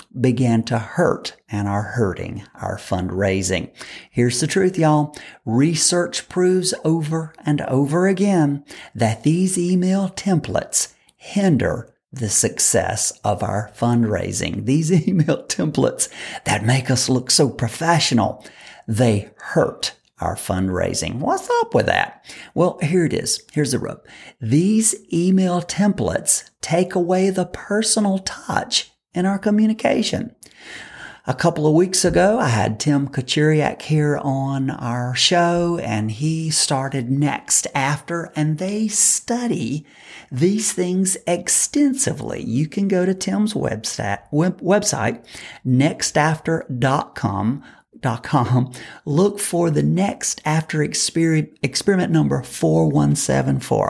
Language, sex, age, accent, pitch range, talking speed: English, male, 50-69, American, 125-180 Hz, 120 wpm